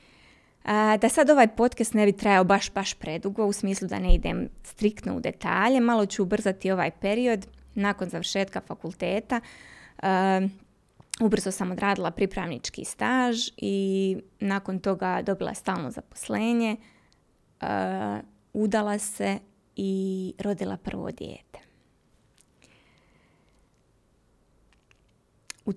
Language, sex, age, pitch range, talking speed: Croatian, female, 20-39, 185-215 Hz, 100 wpm